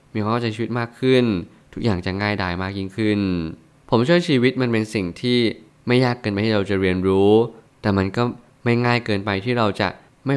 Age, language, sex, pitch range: 20-39, Thai, male, 100-120 Hz